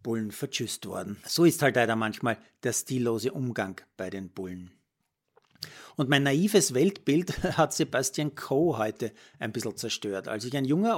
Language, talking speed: German, 160 wpm